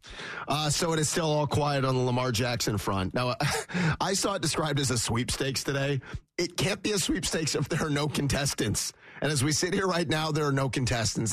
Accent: American